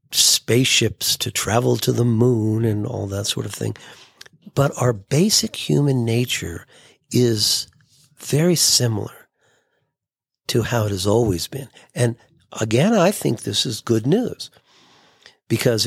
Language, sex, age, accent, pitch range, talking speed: English, male, 50-69, American, 110-135 Hz, 130 wpm